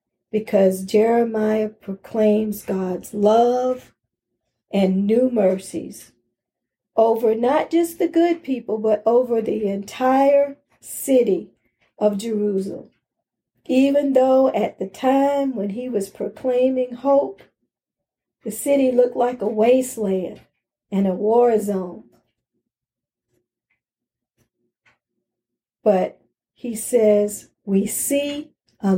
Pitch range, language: 210-275 Hz, English